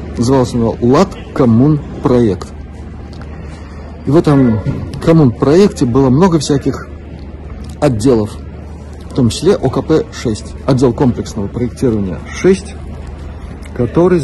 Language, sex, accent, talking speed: Russian, male, native, 90 wpm